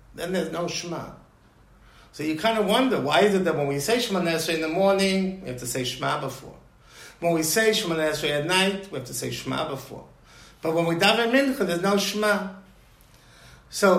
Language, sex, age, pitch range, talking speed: English, male, 50-69, 140-190 Hz, 210 wpm